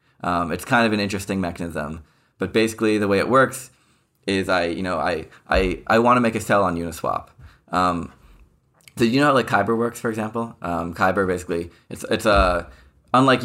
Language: English